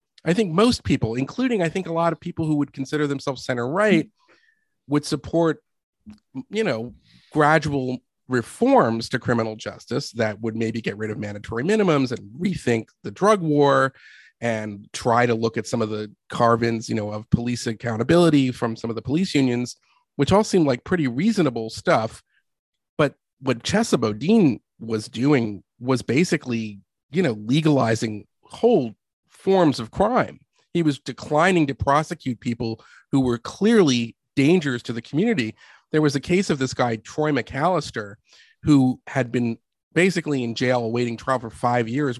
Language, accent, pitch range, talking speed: English, American, 115-150 Hz, 160 wpm